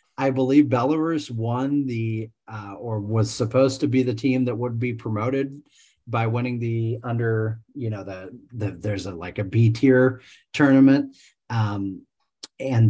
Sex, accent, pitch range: male, American, 110-130 Hz